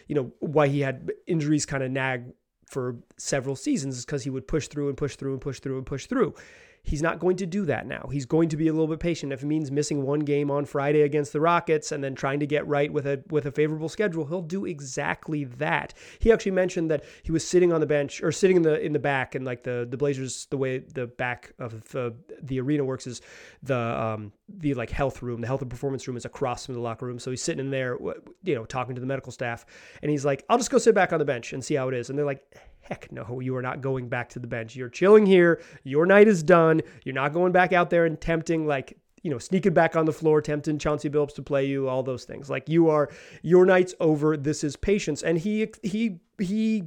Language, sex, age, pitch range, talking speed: English, male, 30-49, 135-170 Hz, 260 wpm